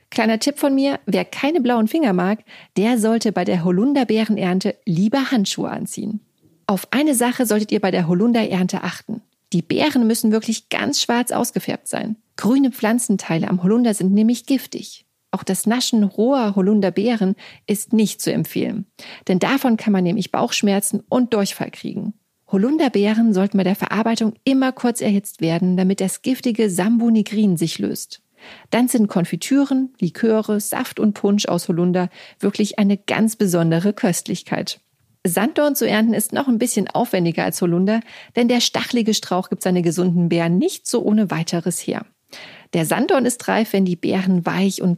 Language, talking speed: German, 160 wpm